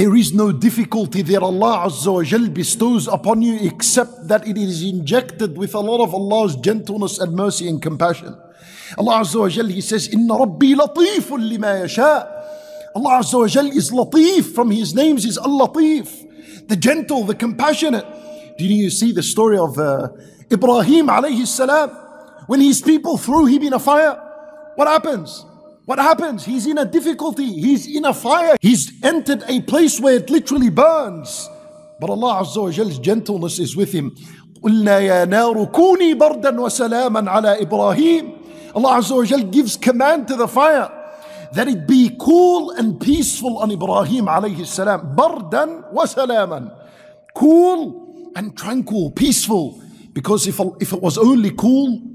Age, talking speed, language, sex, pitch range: 50-69, 130 wpm, English, male, 205-295 Hz